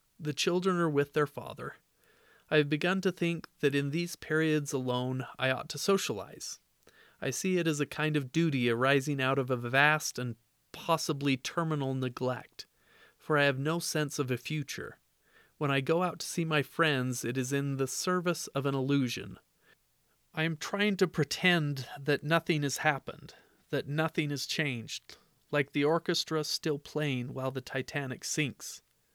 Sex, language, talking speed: male, English, 170 wpm